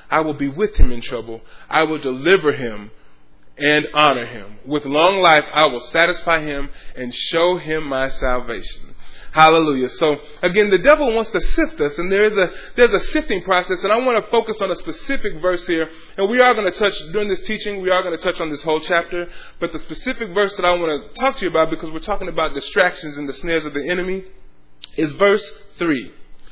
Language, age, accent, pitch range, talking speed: English, 20-39, American, 145-205 Hz, 220 wpm